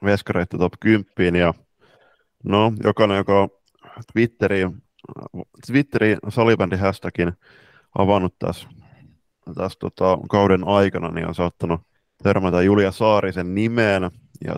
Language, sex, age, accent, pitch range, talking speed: Finnish, male, 20-39, native, 90-100 Hz, 105 wpm